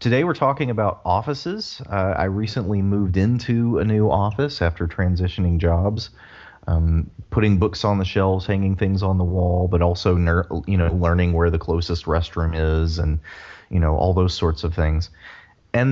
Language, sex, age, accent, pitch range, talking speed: English, male, 30-49, American, 85-100 Hz, 175 wpm